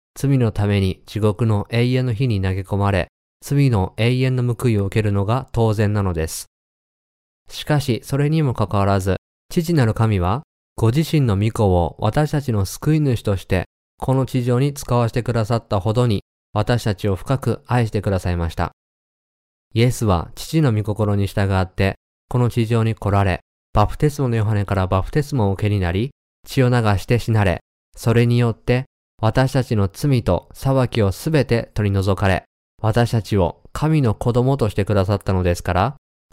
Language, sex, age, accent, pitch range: Japanese, male, 20-39, native, 95-125 Hz